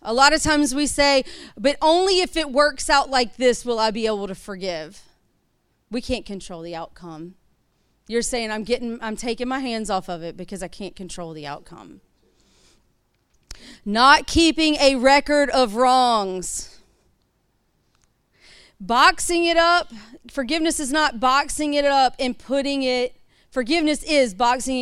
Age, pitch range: 40-59, 190-265 Hz